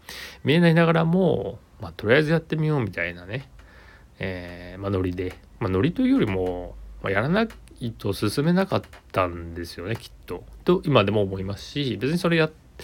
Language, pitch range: Japanese, 90-135 Hz